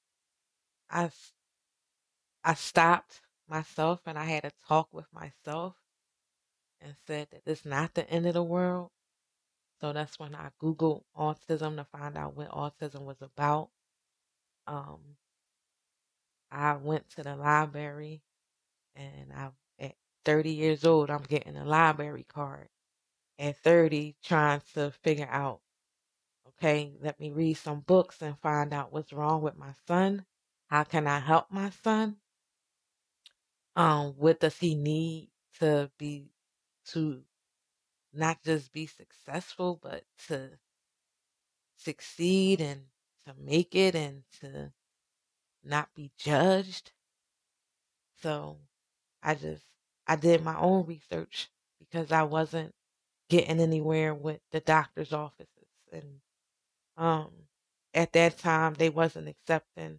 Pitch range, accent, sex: 145-165 Hz, American, female